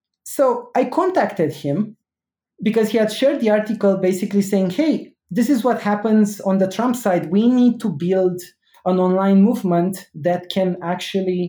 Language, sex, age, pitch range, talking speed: English, male, 30-49, 185-240 Hz, 160 wpm